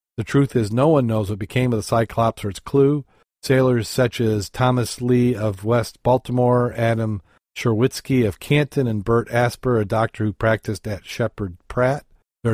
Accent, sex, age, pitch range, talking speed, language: American, male, 40-59, 110-125 Hz, 175 wpm, English